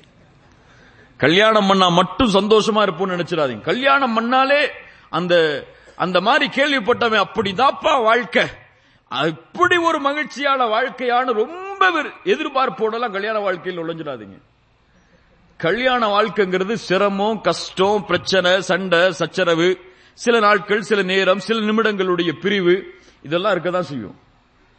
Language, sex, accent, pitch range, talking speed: English, male, Indian, 180-240 Hz, 100 wpm